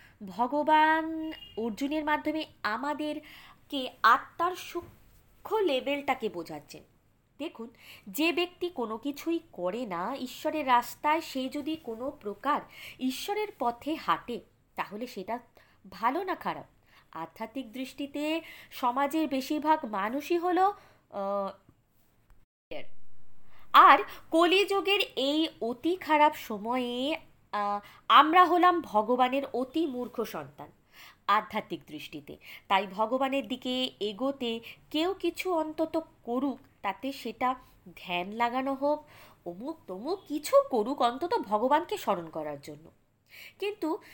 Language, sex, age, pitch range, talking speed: Bengali, female, 20-39, 215-315 Hz, 100 wpm